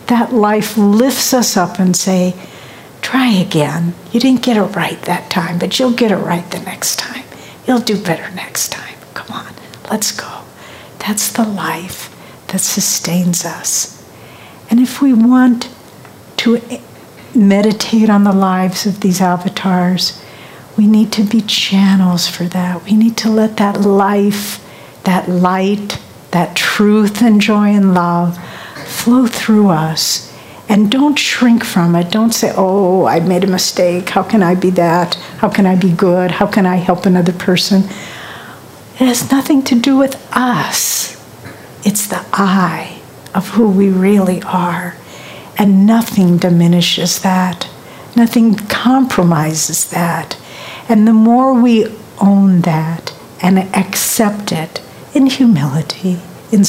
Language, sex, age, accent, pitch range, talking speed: English, female, 60-79, American, 180-220 Hz, 145 wpm